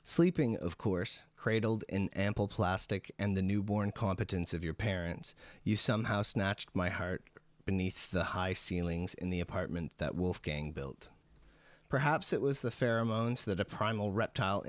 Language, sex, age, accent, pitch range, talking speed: English, male, 30-49, American, 85-110 Hz, 155 wpm